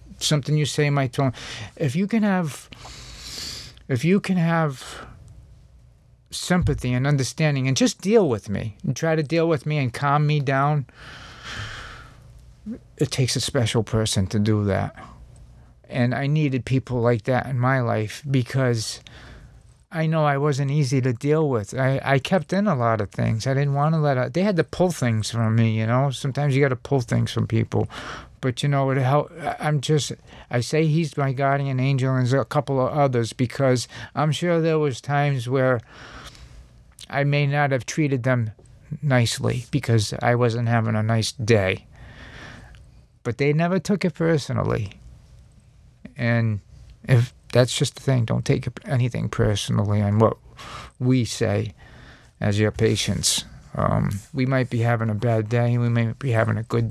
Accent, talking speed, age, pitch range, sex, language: American, 175 wpm, 50-69, 115-145 Hz, male, English